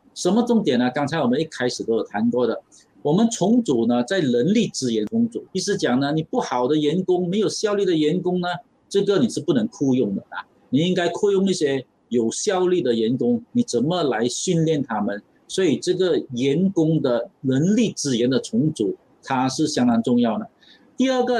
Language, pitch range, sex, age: Chinese, 140-225 Hz, male, 50-69